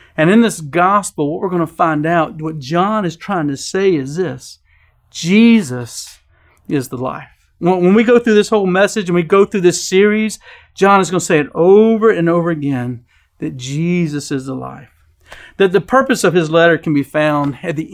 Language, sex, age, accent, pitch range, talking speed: English, male, 50-69, American, 135-195 Hz, 205 wpm